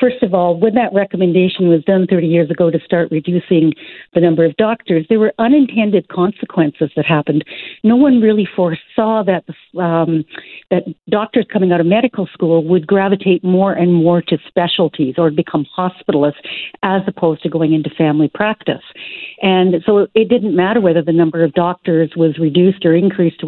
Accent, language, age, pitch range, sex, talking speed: American, English, 60-79, 165-200 Hz, female, 175 wpm